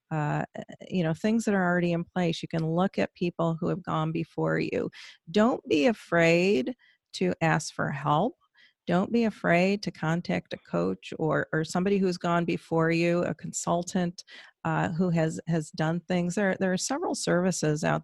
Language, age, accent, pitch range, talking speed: English, 40-59, American, 165-210 Hz, 180 wpm